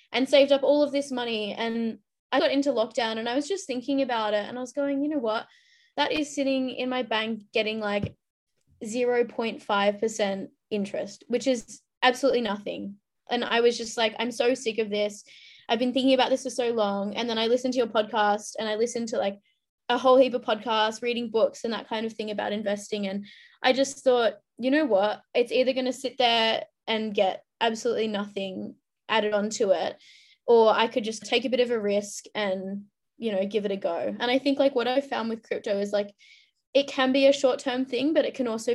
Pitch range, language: 205-255 Hz, English